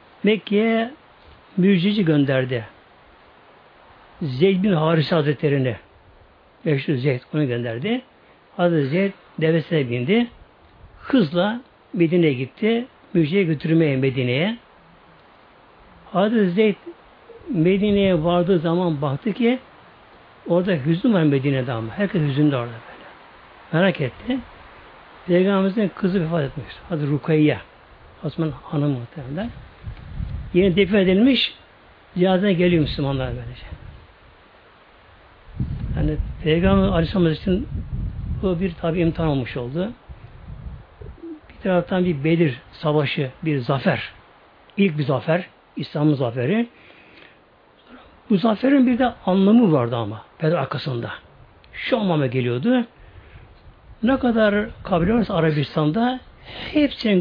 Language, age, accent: Turkish, 60-79, native